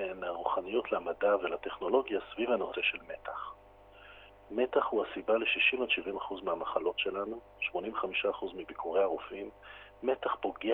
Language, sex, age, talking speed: Hebrew, male, 50-69, 100 wpm